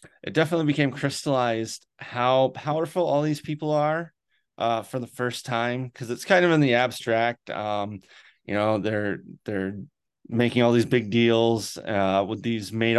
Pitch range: 110-130 Hz